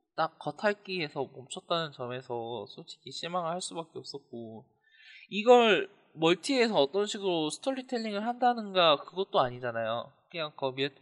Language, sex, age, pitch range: Korean, male, 20-39, 130-185 Hz